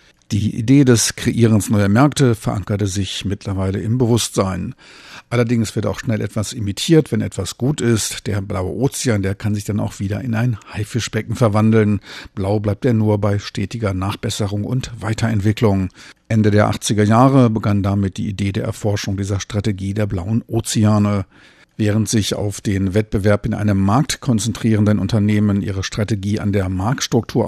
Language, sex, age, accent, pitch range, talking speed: German, male, 50-69, German, 100-115 Hz, 160 wpm